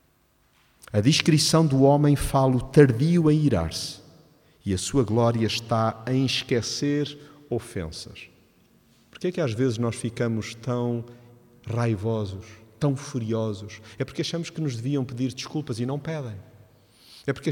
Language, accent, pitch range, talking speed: Portuguese, Brazilian, 105-145 Hz, 135 wpm